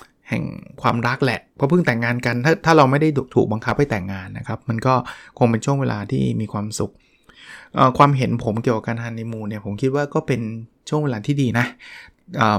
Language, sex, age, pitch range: Thai, male, 20-39, 115-135 Hz